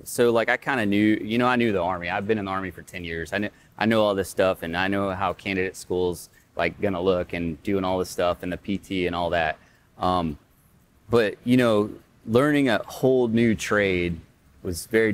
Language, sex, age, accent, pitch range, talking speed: English, male, 30-49, American, 90-115 Hz, 230 wpm